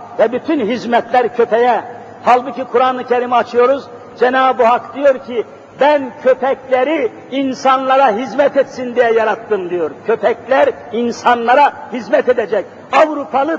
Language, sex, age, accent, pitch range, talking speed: Turkish, male, 50-69, native, 240-290 Hz, 110 wpm